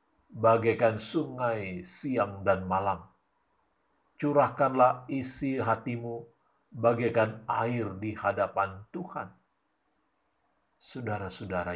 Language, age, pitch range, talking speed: Indonesian, 50-69, 90-120 Hz, 70 wpm